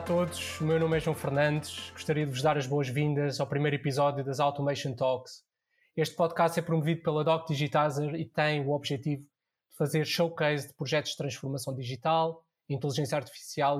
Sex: male